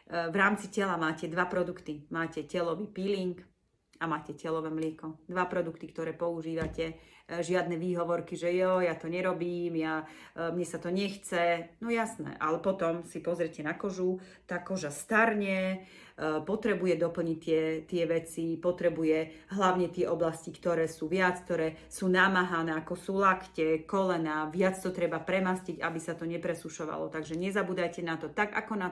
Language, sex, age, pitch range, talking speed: Slovak, female, 40-59, 155-180 Hz, 155 wpm